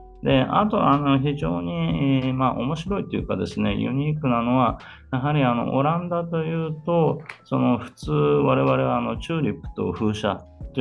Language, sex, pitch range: Japanese, male, 95-140 Hz